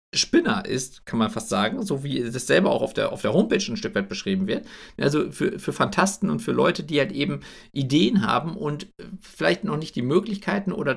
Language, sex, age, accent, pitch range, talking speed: German, male, 50-69, German, 135-200 Hz, 220 wpm